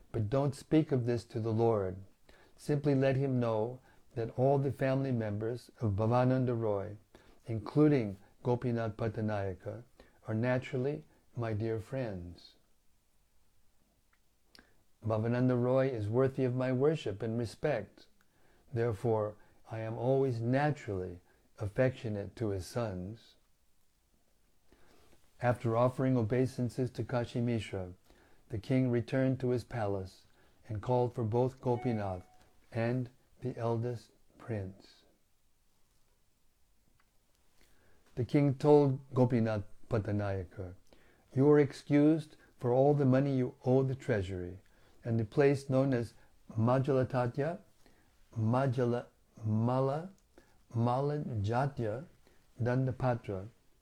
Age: 60-79